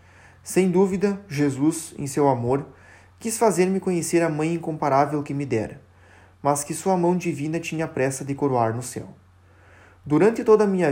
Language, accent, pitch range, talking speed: Portuguese, Brazilian, 110-180 Hz, 165 wpm